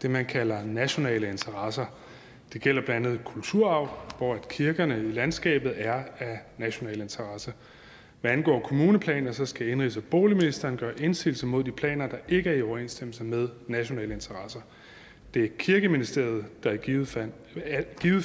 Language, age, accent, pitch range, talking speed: Danish, 30-49, native, 120-160 Hz, 145 wpm